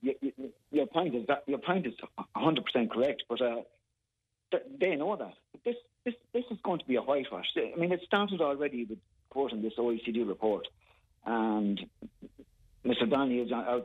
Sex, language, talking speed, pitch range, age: male, English, 180 wpm, 120-155 Hz, 40-59